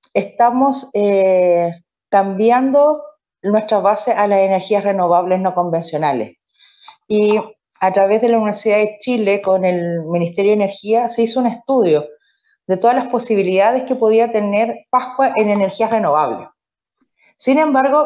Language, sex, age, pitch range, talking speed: Spanish, female, 40-59, 180-235 Hz, 135 wpm